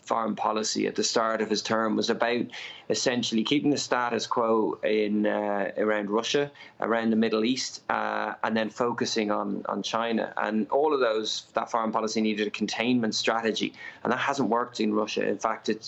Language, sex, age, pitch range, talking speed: English, male, 20-39, 110-120 Hz, 190 wpm